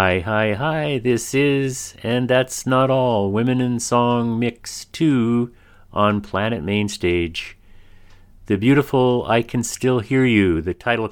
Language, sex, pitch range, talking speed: English, male, 95-120 Hz, 140 wpm